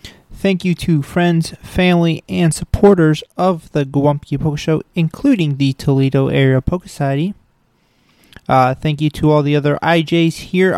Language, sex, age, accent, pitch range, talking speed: English, male, 30-49, American, 150-195 Hz, 150 wpm